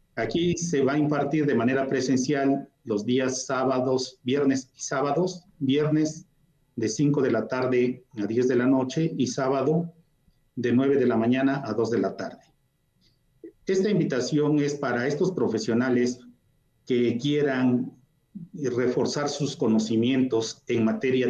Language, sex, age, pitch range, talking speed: Spanish, male, 40-59, 125-150 Hz, 140 wpm